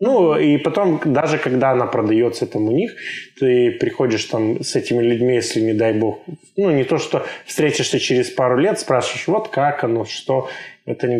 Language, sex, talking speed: Russian, male, 180 wpm